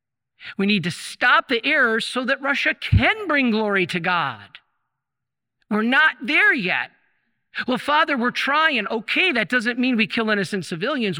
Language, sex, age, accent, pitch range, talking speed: English, male, 50-69, American, 190-255 Hz, 160 wpm